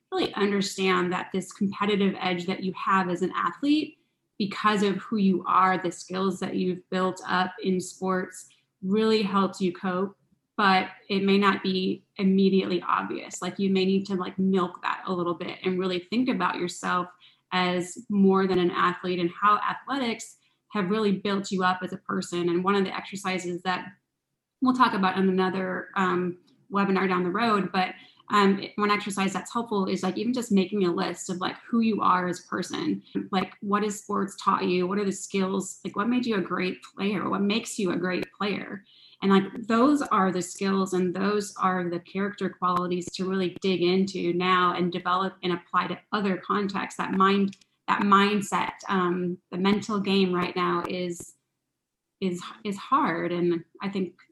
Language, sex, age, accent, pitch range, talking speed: English, female, 20-39, American, 180-200 Hz, 185 wpm